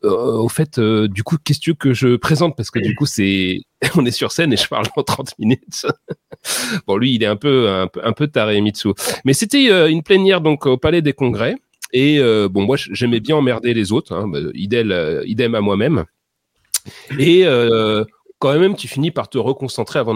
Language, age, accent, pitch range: French, 30-49, French, 105-155 Hz